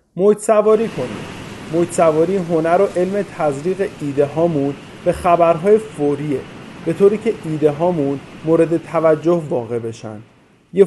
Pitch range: 140-180 Hz